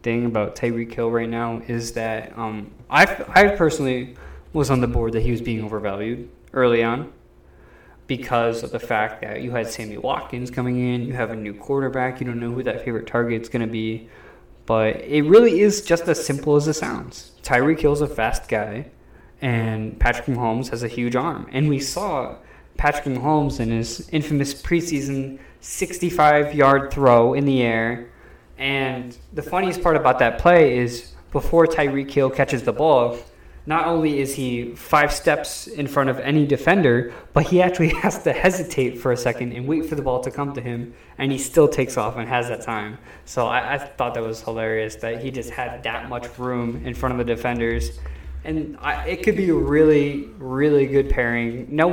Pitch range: 115-145 Hz